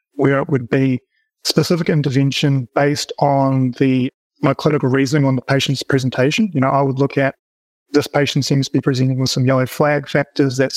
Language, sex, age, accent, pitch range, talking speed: English, male, 30-49, Australian, 135-145 Hz, 190 wpm